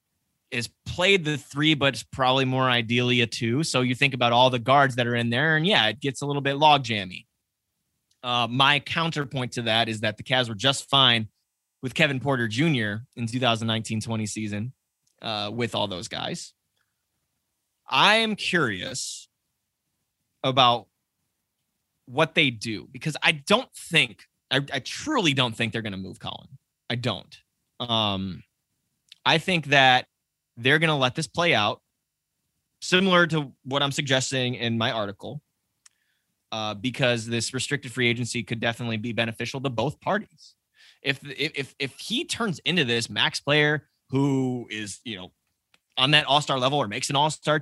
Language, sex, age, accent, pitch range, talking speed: English, male, 20-39, American, 115-150 Hz, 165 wpm